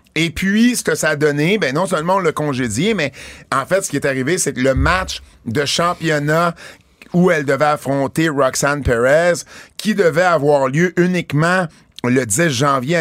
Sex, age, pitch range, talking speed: male, 50-69, 130-165 Hz, 185 wpm